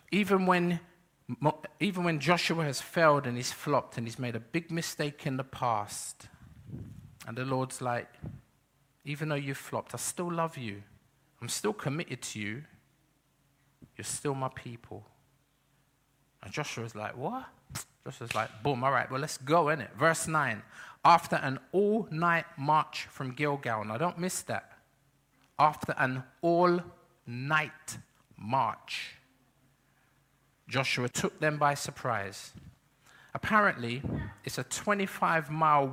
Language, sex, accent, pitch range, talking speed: English, male, British, 130-165 Hz, 130 wpm